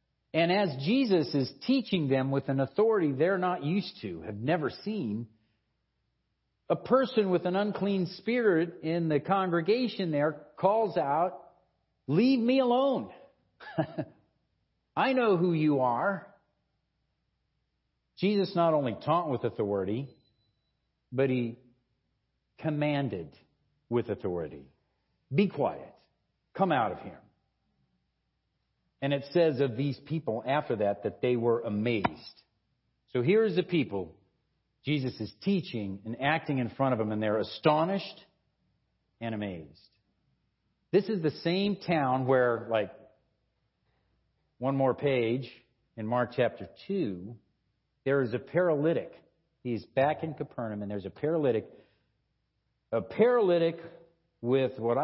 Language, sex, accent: English, male, American